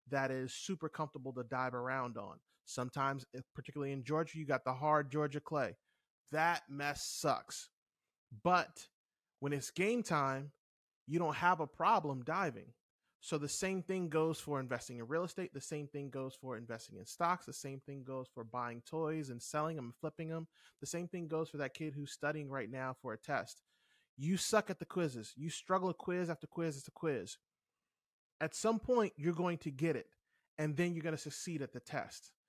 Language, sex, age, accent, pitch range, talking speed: English, male, 30-49, American, 135-170 Hz, 200 wpm